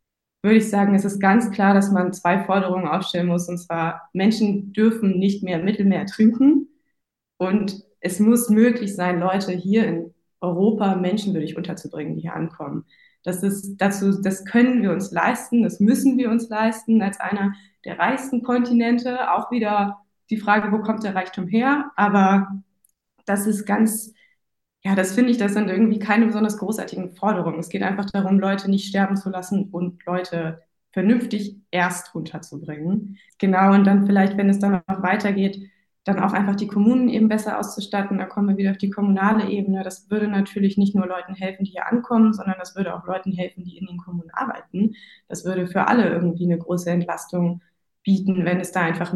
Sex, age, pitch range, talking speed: female, 20-39, 180-210 Hz, 185 wpm